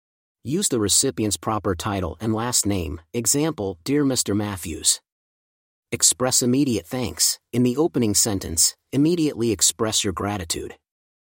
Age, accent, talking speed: 40-59, American, 125 wpm